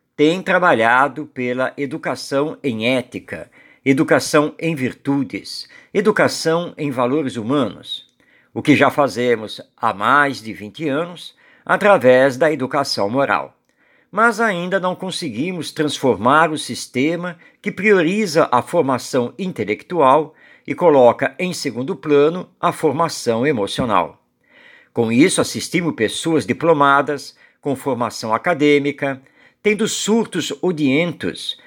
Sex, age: male, 50-69